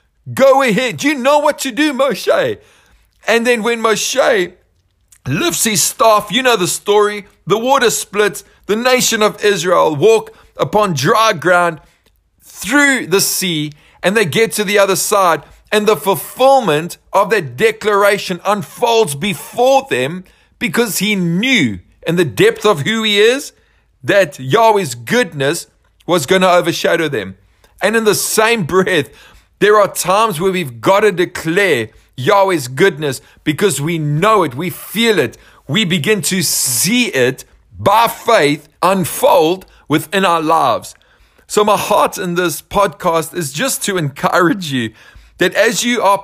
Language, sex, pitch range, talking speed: English, male, 160-215 Hz, 150 wpm